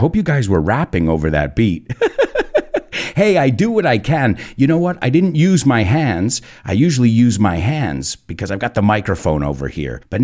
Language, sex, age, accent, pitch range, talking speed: English, male, 50-69, American, 100-165 Hz, 205 wpm